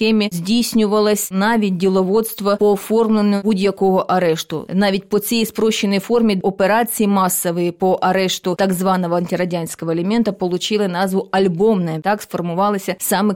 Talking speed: 115 wpm